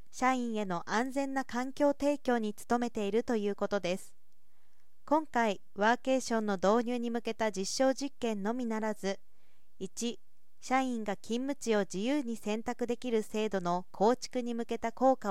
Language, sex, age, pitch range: Japanese, female, 40-59, 205-255 Hz